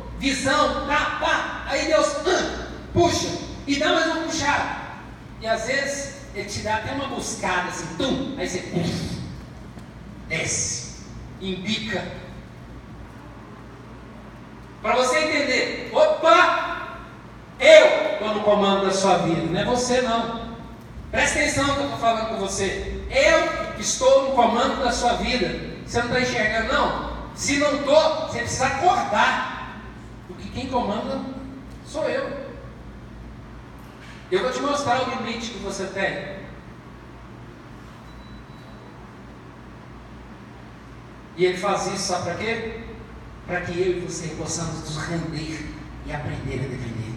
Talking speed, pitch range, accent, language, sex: 130 wpm, 180-280 Hz, Brazilian, Portuguese, male